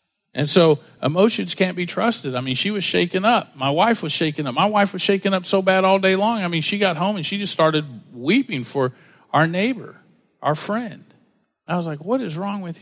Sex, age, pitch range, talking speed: male, 50-69, 150-205 Hz, 230 wpm